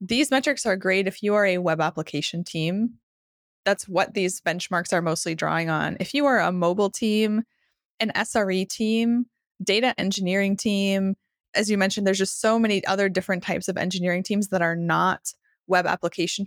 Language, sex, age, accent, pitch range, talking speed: English, female, 20-39, American, 180-220 Hz, 180 wpm